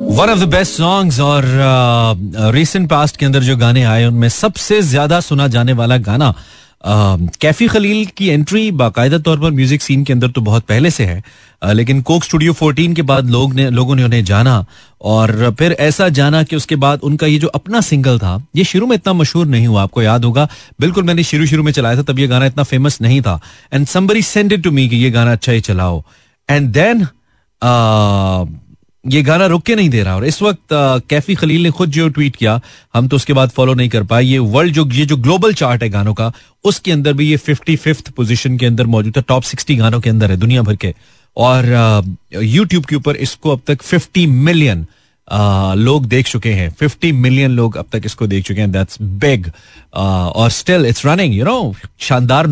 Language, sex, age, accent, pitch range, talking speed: Hindi, male, 30-49, native, 115-155 Hz, 200 wpm